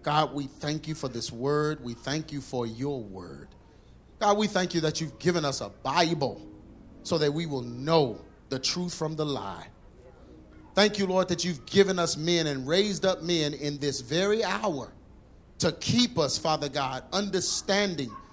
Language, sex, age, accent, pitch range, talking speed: English, male, 30-49, American, 125-180 Hz, 180 wpm